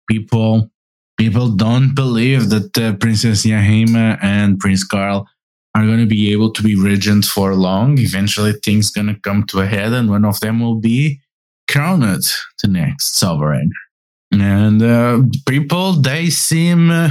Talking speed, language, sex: 155 wpm, English, male